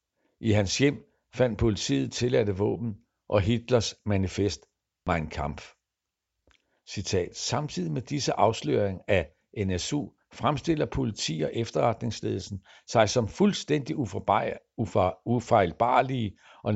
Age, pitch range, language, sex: 60-79, 95-130 Hz, Danish, male